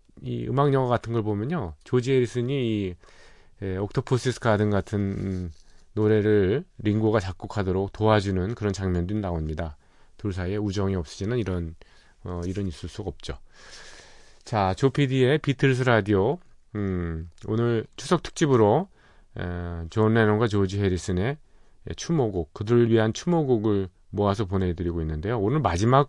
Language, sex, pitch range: Korean, male, 90-125 Hz